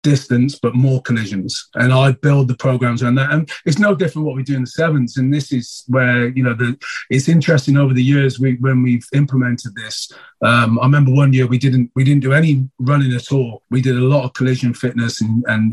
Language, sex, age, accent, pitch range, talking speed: English, male, 30-49, British, 120-140 Hz, 235 wpm